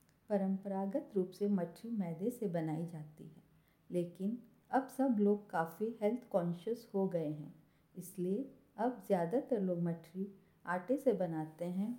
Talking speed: 140 wpm